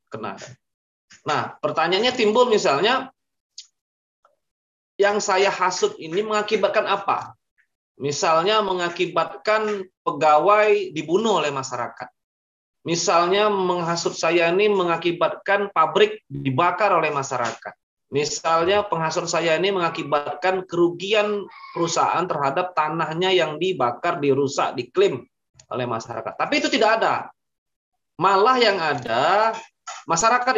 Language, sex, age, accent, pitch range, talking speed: Indonesian, male, 20-39, native, 160-220 Hz, 95 wpm